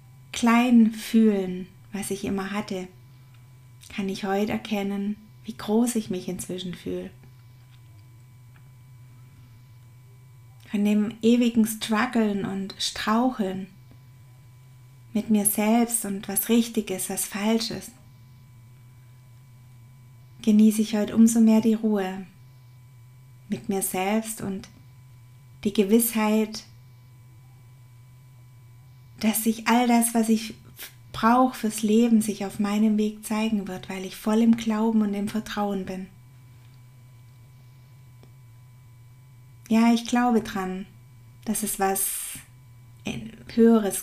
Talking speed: 100 wpm